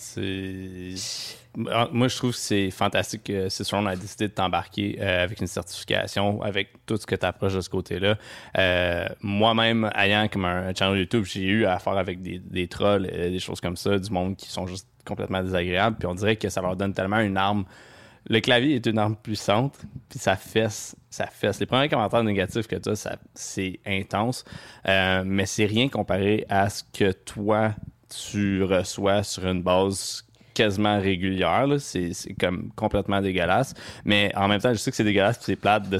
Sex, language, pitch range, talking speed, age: male, French, 95-110 Hz, 200 wpm, 20-39